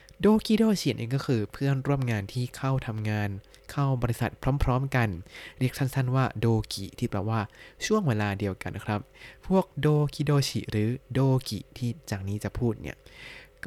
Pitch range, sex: 110-140 Hz, male